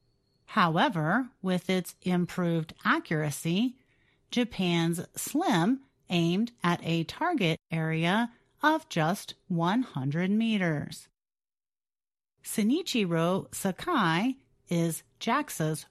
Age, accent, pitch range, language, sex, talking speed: 40-59, American, 160-235 Hz, English, female, 75 wpm